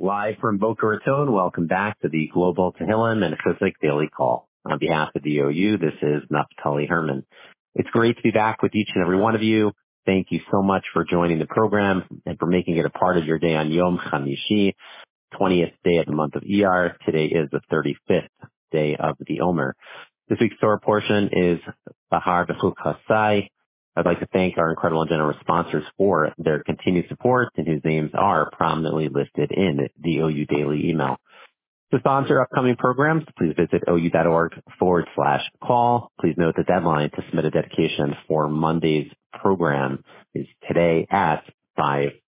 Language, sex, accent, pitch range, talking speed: English, male, American, 80-105 Hz, 180 wpm